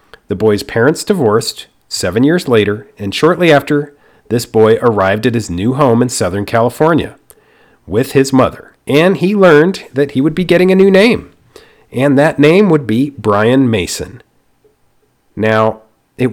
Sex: male